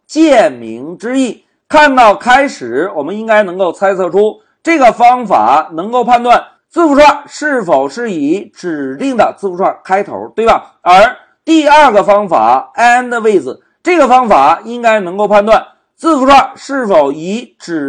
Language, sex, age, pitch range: Chinese, male, 50-69, 220-310 Hz